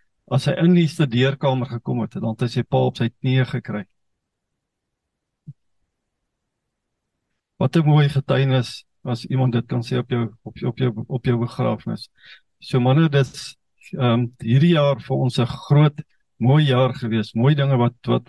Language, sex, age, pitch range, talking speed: English, male, 50-69, 120-145 Hz, 165 wpm